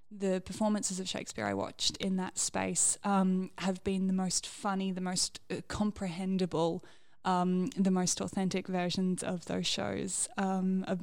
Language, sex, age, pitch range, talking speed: English, female, 10-29, 185-205 Hz, 160 wpm